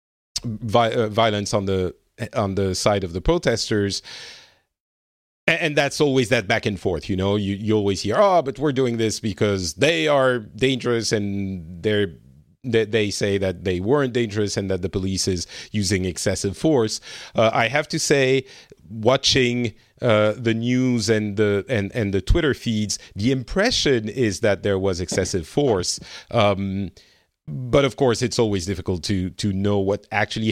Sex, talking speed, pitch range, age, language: male, 170 wpm, 100-125 Hz, 40-59, English